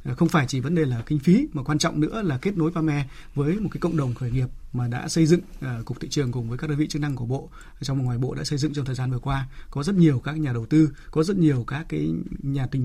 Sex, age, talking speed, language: male, 20-39, 315 wpm, Vietnamese